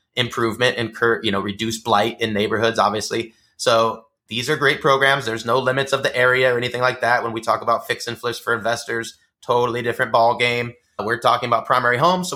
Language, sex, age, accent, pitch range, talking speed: English, male, 20-39, American, 110-150 Hz, 210 wpm